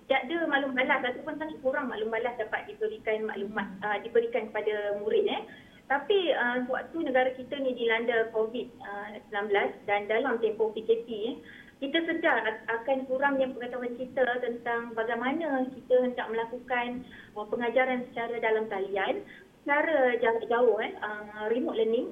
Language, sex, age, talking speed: Malay, female, 20-39, 145 wpm